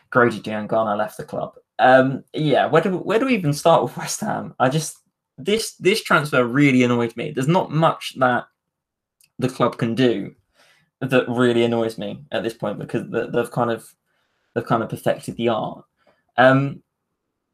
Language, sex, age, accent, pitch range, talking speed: English, male, 20-39, British, 120-155 Hz, 180 wpm